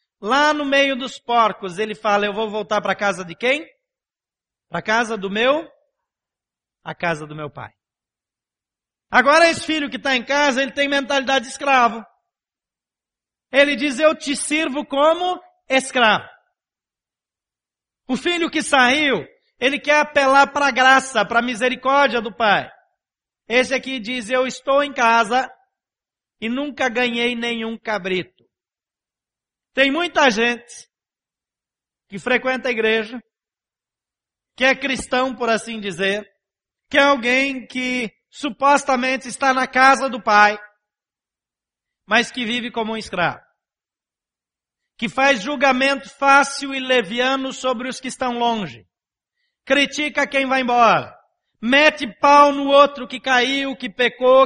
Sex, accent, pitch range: male, Brazilian, 235-280 Hz